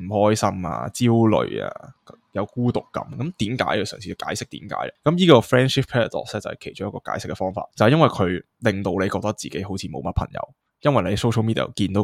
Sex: male